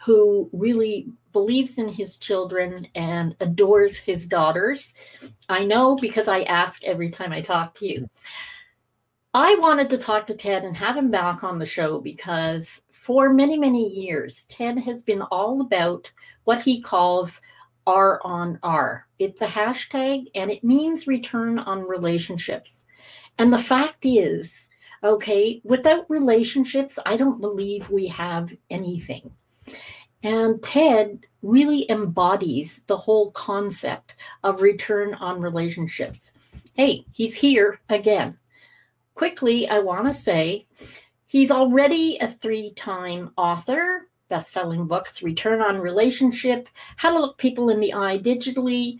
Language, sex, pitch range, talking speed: English, female, 190-255 Hz, 135 wpm